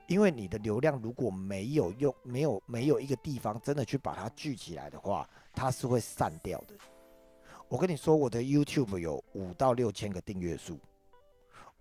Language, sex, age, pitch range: Chinese, male, 50-69, 95-145 Hz